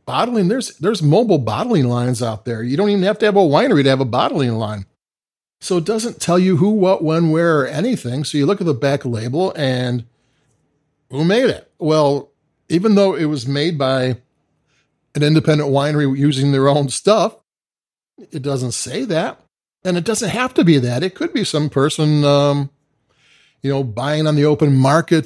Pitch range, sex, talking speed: 135-175 Hz, male, 190 wpm